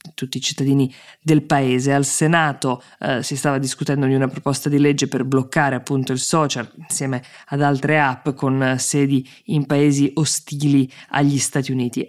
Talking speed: 170 wpm